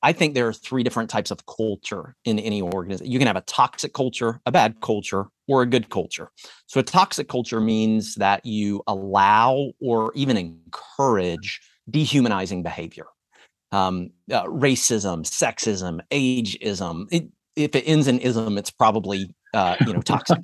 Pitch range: 100-135 Hz